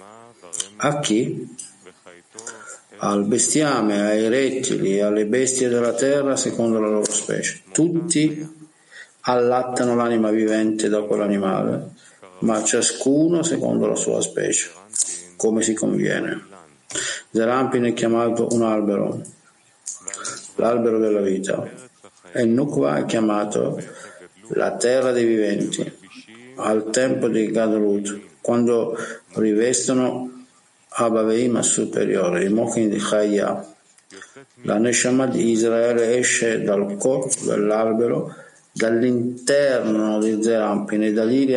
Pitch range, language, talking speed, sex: 105-125 Hz, Italian, 105 wpm, male